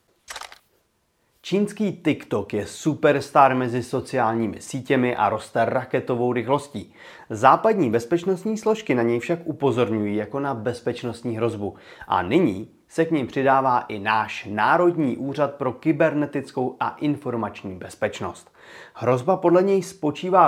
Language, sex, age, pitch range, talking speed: Czech, male, 30-49, 115-155 Hz, 120 wpm